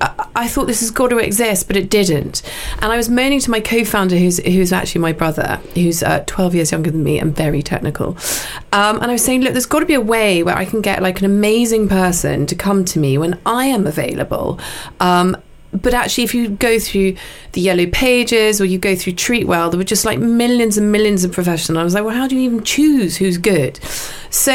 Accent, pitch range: British, 175-230 Hz